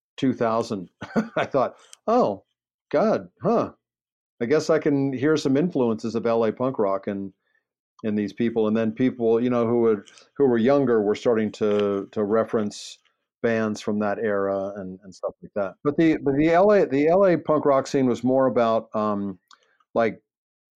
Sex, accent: male, American